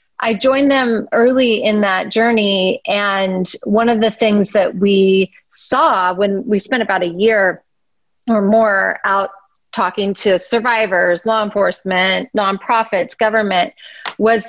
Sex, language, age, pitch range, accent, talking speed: female, English, 30-49, 185-225 Hz, American, 135 wpm